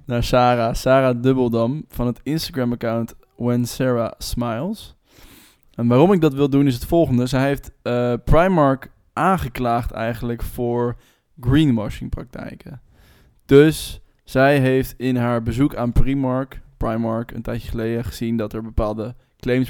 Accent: Dutch